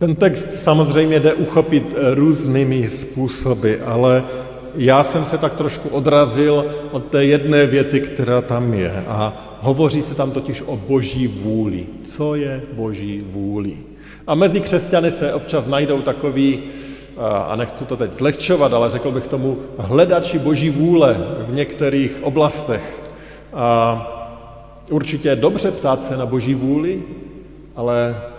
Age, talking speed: 50-69, 135 wpm